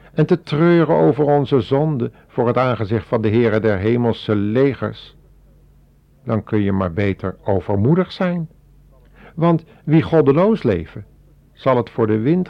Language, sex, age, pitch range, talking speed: Dutch, male, 50-69, 105-150 Hz, 150 wpm